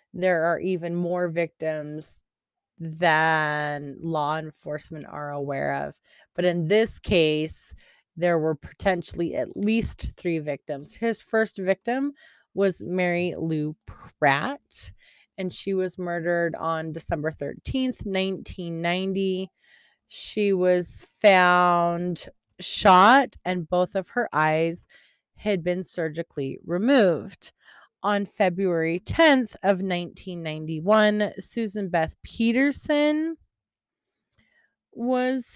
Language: English